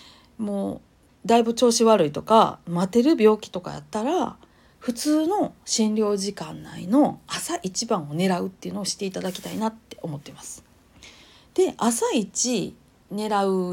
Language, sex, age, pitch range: Japanese, female, 40-59, 180-260 Hz